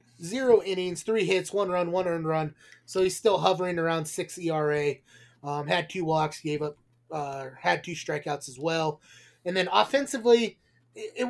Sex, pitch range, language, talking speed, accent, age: male, 155-195 Hz, English, 175 wpm, American, 20-39